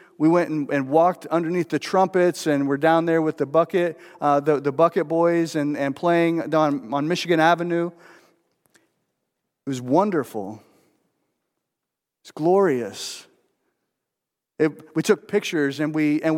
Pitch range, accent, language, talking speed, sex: 145-180 Hz, American, English, 145 wpm, male